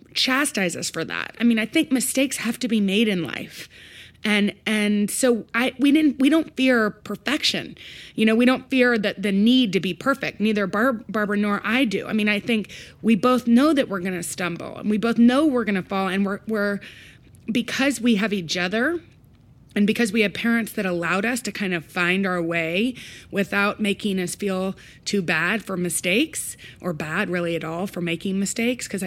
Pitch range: 185-230 Hz